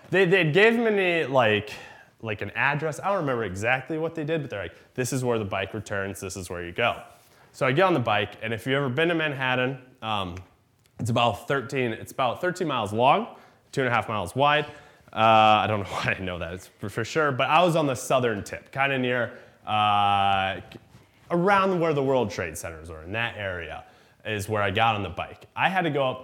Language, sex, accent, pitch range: English, male, American, 100-135 Hz